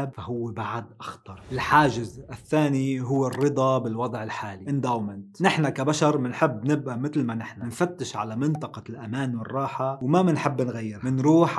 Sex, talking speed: male, 130 wpm